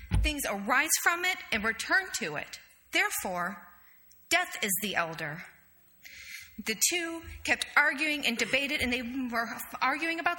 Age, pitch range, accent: 40-59, 200-295 Hz, American